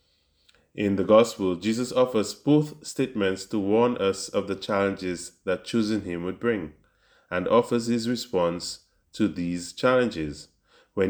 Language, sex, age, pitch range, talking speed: English, male, 20-39, 90-120 Hz, 140 wpm